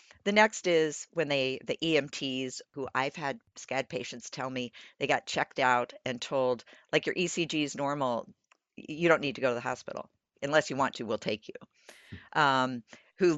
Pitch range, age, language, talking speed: 125-160 Hz, 50-69, English, 190 wpm